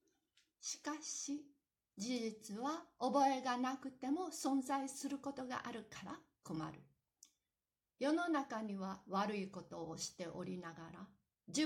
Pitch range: 195-285 Hz